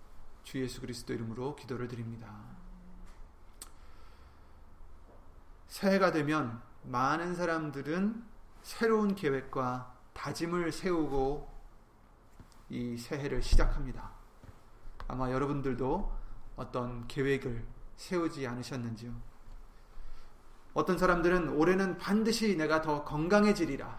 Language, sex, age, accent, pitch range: Korean, male, 30-49, native, 110-180 Hz